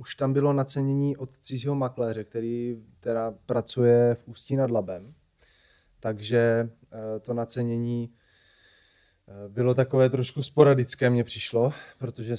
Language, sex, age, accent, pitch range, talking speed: Czech, male, 20-39, native, 115-135 Hz, 110 wpm